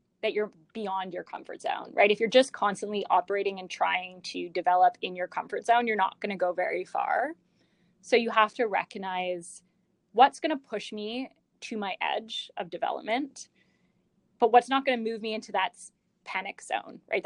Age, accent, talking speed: 20-39, American, 175 wpm